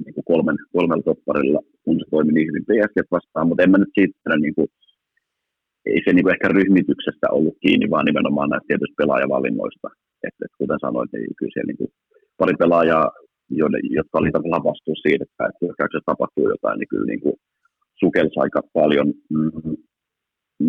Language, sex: Finnish, male